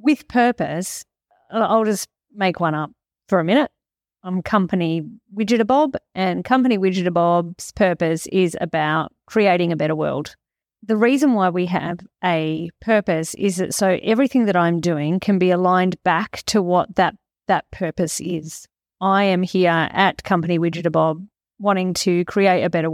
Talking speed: 150 wpm